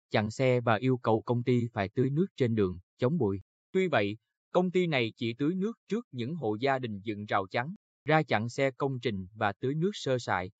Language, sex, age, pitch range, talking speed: Vietnamese, male, 20-39, 115-155 Hz, 225 wpm